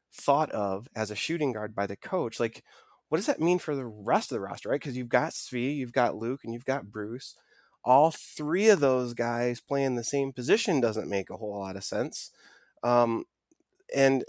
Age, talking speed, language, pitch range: 20-39, 210 wpm, English, 110-140 Hz